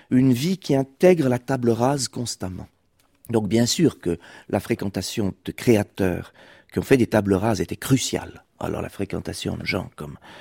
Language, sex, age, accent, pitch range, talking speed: French, male, 40-59, French, 100-135 Hz, 175 wpm